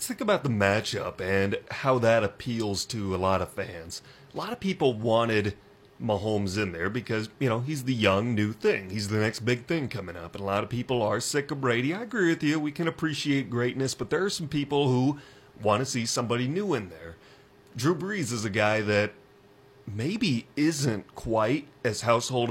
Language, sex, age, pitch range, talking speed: English, male, 30-49, 105-135 Hz, 210 wpm